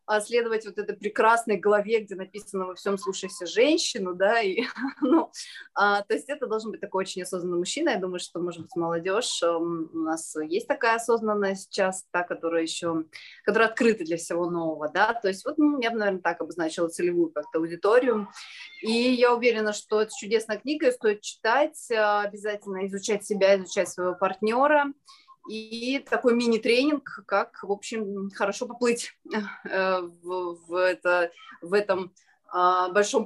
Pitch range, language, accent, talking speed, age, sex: 185-240 Hz, Russian, native, 145 wpm, 20-39, female